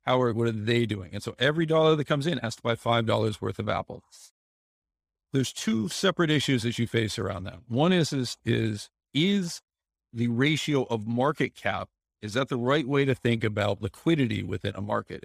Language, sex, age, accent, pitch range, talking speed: English, male, 50-69, American, 105-135 Hz, 200 wpm